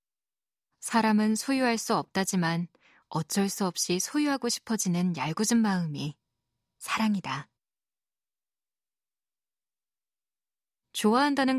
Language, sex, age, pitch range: Korean, female, 20-39, 175-230 Hz